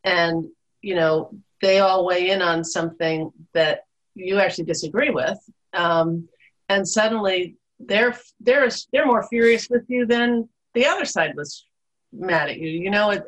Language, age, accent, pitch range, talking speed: English, 50-69, American, 175-220 Hz, 160 wpm